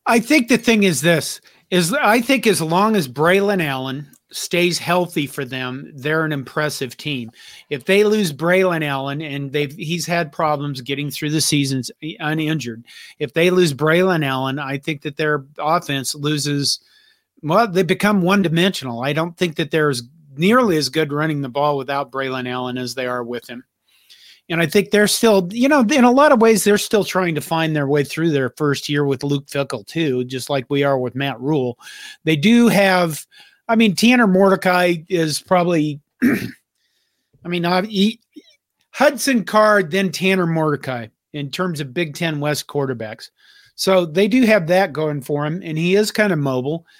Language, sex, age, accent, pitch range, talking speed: English, male, 40-59, American, 145-195 Hz, 185 wpm